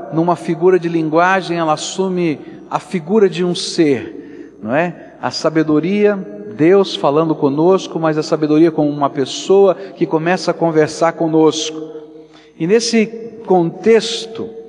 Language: Portuguese